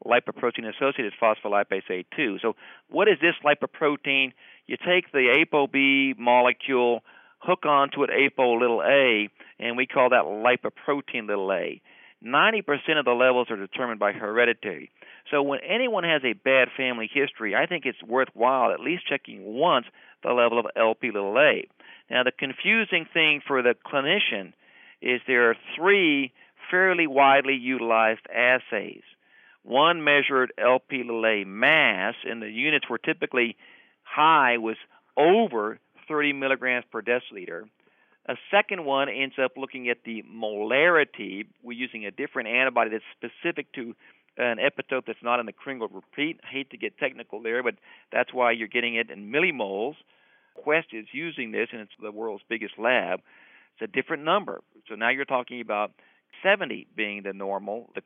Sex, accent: male, American